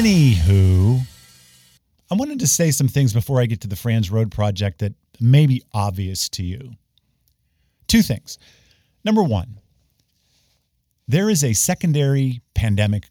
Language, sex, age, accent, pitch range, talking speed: English, male, 50-69, American, 100-150 Hz, 135 wpm